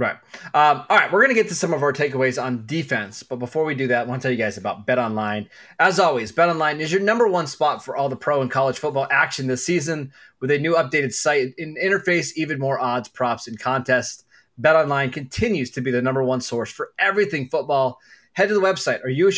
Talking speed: 240 wpm